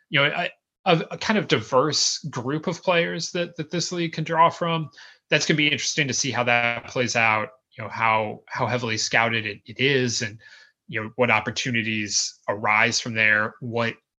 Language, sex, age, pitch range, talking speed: English, male, 30-49, 115-145 Hz, 195 wpm